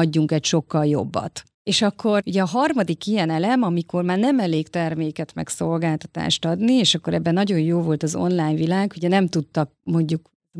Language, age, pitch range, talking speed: Hungarian, 30-49, 155-195 Hz, 180 wpm